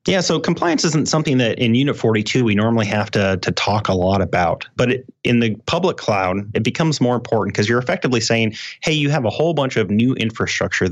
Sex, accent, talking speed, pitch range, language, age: male, American, 225 wpm, 100-125 Hz, English, 30-49